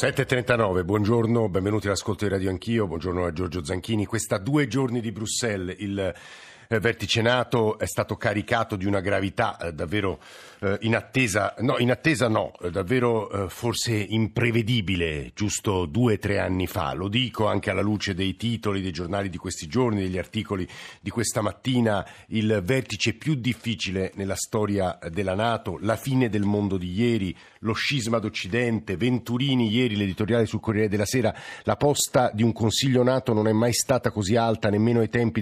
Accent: native